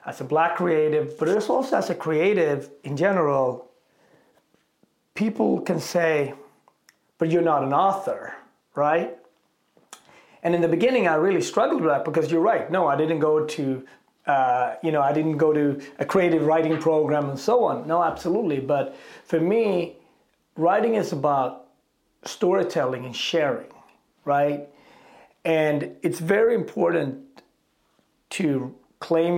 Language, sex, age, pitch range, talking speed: English, male, 40-59, 140-170 Hz, 145 wpm